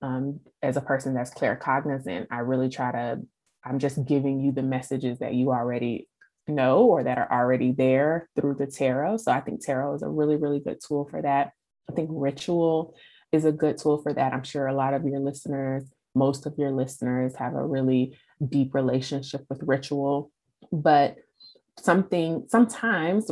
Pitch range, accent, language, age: 135-145 Hz, American, English, 20-39